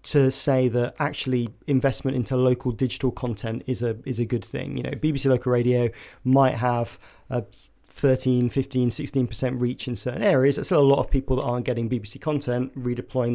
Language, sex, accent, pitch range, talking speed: English, male, British, 120-130 Hz, 190 wpm